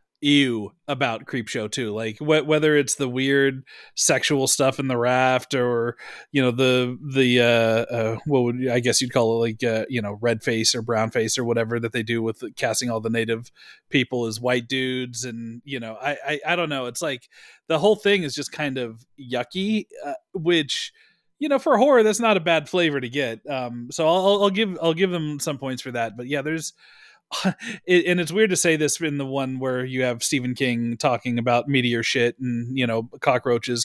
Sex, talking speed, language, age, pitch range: male, 215 wpm, English, 30-49, 120-155 Hz